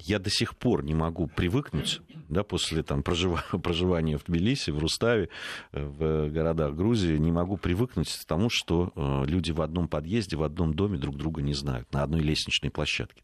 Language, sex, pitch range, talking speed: Russian, male, 80-100 Hz, 175 wpm